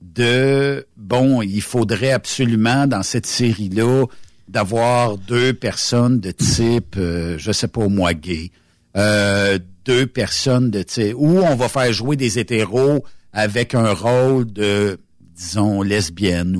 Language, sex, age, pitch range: French, male, 60-79, 95-125 Hz